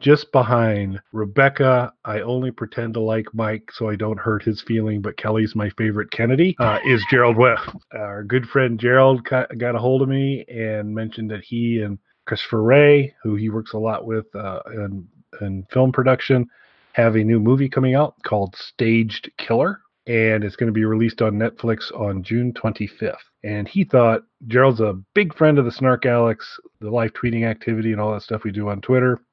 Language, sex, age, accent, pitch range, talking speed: English, male, 30-49, American, 110-130 Hz, 190 wpm